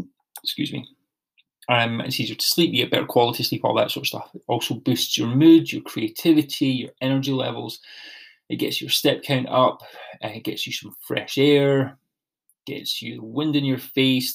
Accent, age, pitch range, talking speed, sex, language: British, 20-39, 115-135 Hz, 195 wpm, male, English